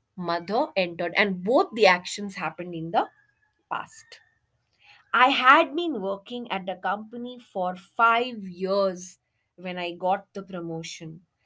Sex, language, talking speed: female, English, 130 wpm